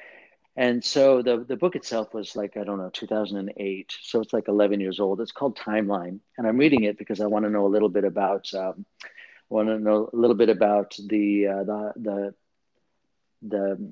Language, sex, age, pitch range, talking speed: English, male, 40-59, 105-125 Hz, 200 wpm